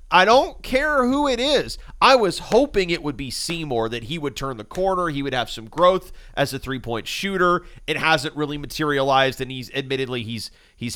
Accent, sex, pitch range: American, male, 125-180 Hz